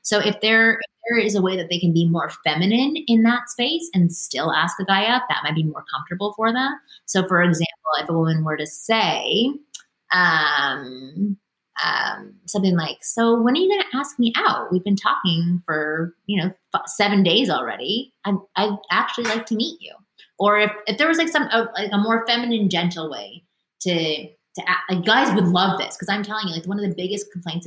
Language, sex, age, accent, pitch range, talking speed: English, female, 20-39, American, 170-225 Hz, 220 wpm